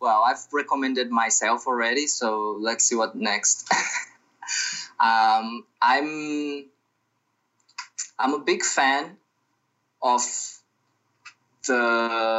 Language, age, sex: English, 20-39, male